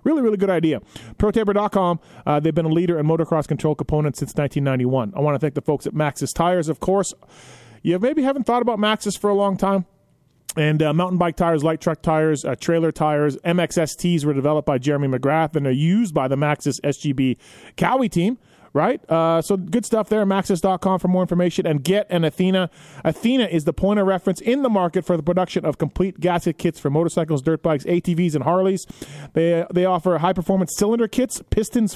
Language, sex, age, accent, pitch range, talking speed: English, male, 30-49, American, 150-200 Hz, 200 wpm